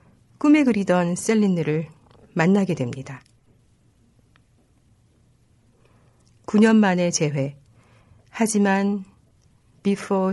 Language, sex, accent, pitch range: Korean, female, native, 130-195 Hz